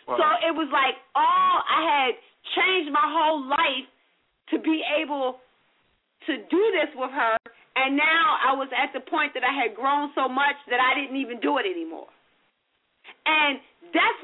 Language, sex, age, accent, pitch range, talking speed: English, female, 40-59, American, 275-365 Hz, 175 wpm